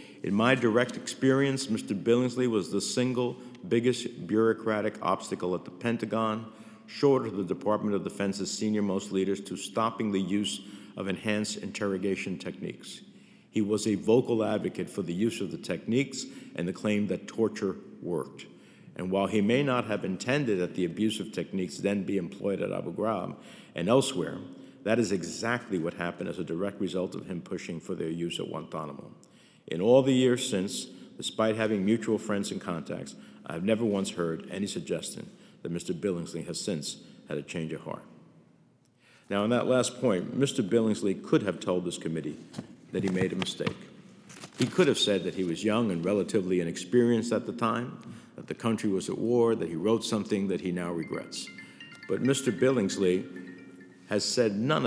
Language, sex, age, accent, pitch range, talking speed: English, male, 50-69, American, 95-115 Hz, 180 wpm